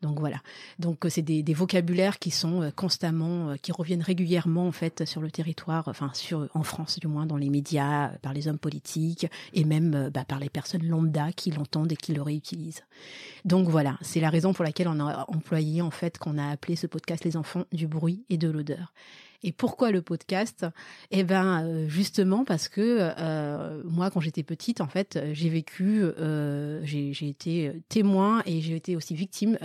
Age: 30-49